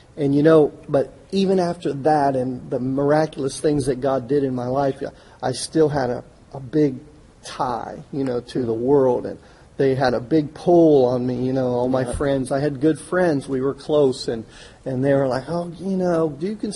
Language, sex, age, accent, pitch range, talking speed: English, male, 40-59, American, 125-150 Hz, 210 wpm